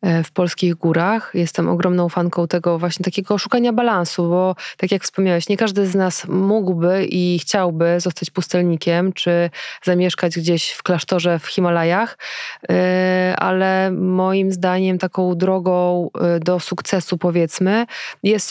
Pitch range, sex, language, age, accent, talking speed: 180-205 Hz, female, Polish, 20-39, native, 130 wpm